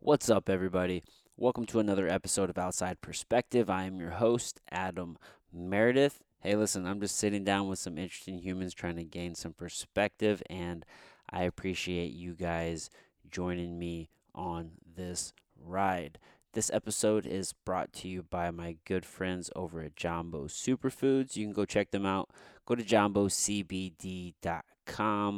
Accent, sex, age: American, male, 20-39